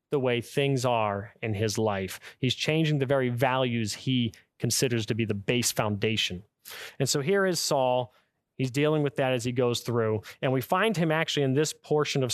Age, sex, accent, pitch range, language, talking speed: 30-49, male, American, 115-145 Hz, English, 200 wpm